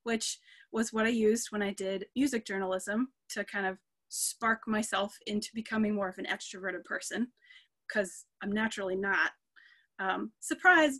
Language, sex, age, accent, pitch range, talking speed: English, female, 20-39, American, 210-265 Hz, 155 wpm